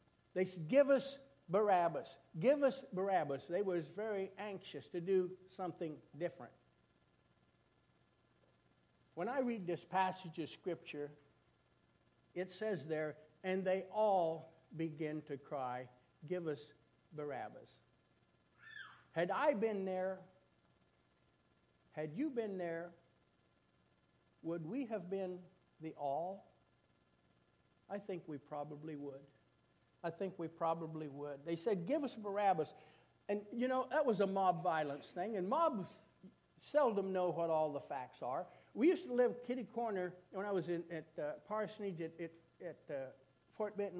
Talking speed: 140 wpm